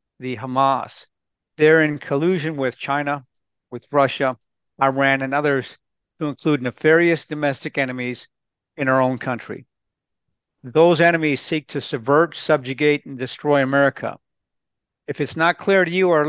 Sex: male